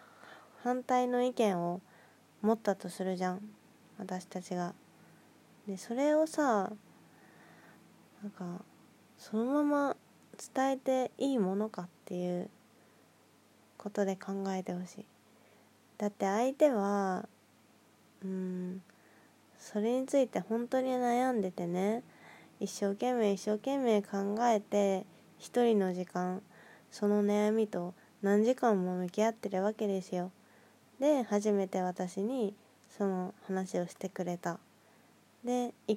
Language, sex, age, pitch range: Japanese, female, 20-39, 185-235 Hz